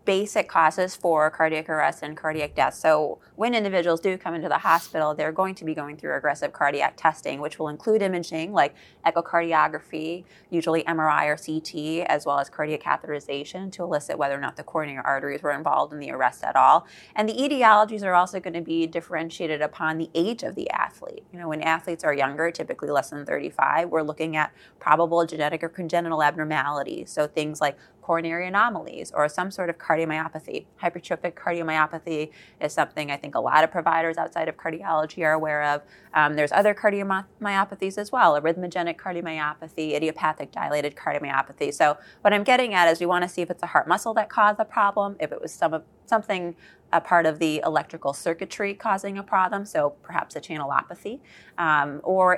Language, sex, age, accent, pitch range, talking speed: English, female, 20-39, American, 155-185 Hz, 190 wpm